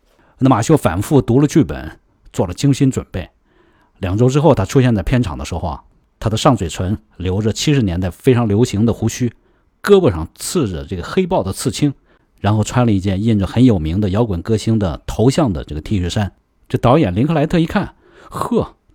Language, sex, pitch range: Chinese, male, 90-125 Hz